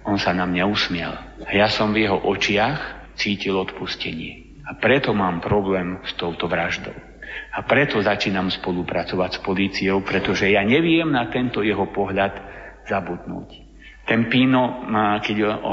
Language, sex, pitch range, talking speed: Slovak, male, 95-115 Hz, 145 wpm